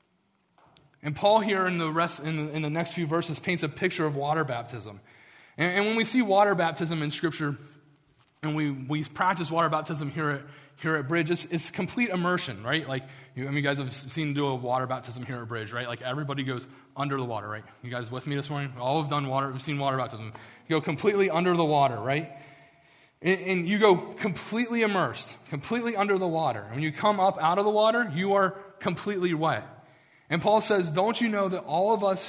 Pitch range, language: 140-185 Hz, English